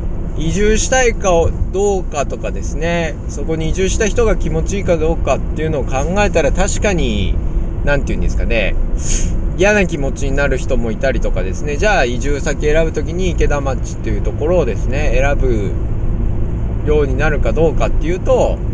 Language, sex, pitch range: Japanese, male, 100-160 Hz